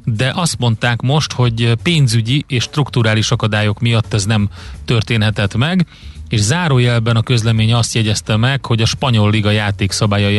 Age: 30-49